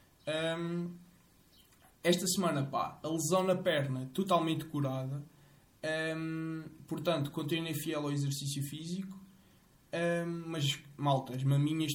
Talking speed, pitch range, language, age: 110 wpm, 150-190 Hz, Portuguese, 20-39